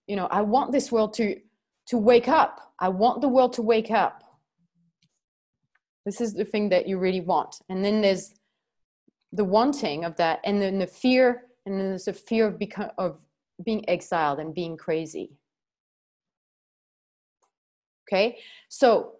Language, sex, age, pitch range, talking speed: English, female, 30-49, 200-255 Hz, 160 wpm